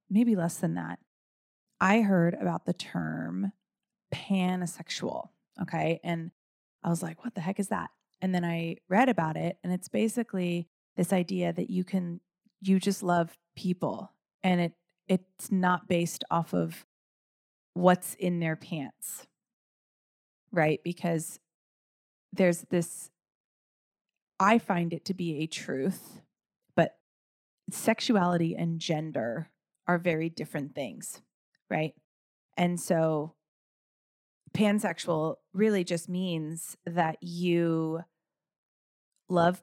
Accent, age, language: American, 20-39, English